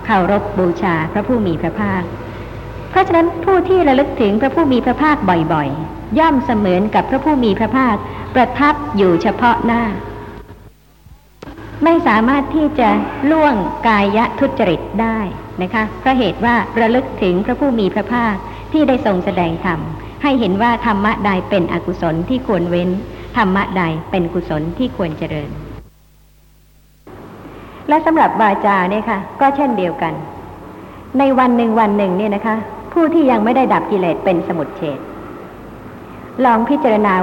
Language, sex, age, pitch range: Thai, male, 60-79, 190-265 Hz